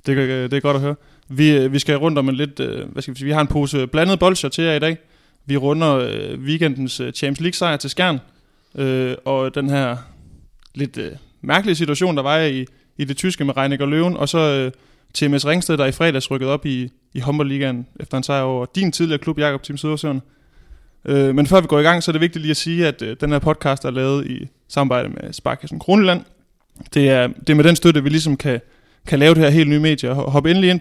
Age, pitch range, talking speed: 20-39, 135-160 Hz, 240 wpm